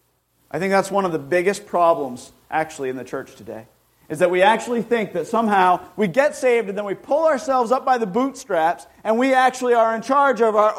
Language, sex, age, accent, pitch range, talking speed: English, male, 40-59, American, 150-240 Hz, 220 wpm